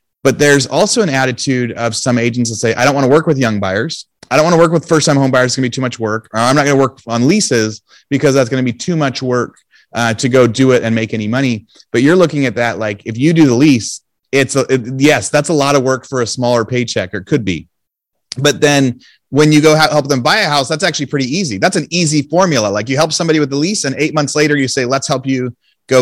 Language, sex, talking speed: English, male, 280 wpm